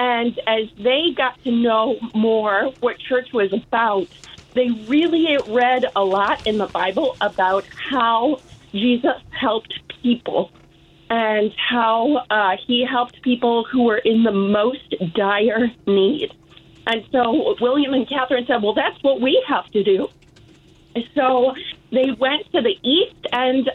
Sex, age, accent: female, 40-59, American